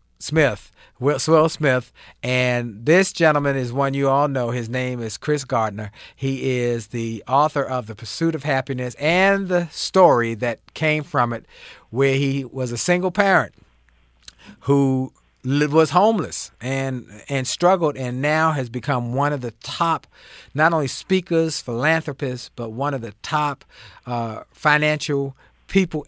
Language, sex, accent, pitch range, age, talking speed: English, male, American, 125-155 Hz, 50-69, 145 wpm